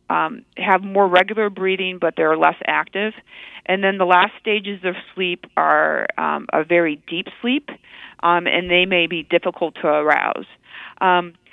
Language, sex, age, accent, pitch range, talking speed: English, female, 40-59, American, 180-240 Hz, 160 wpm